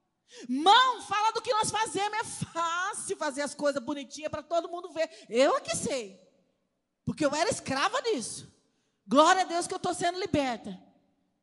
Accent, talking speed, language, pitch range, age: Brazilian, 175 wpm, Portuguese, 230-315 Hz, 40-59